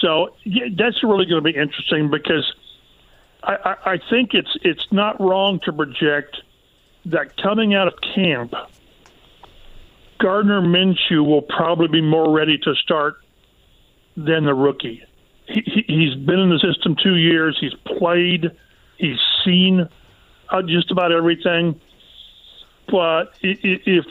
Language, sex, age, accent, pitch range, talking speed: English, male, 50-69, American, 155-190 Hz, 135 wpm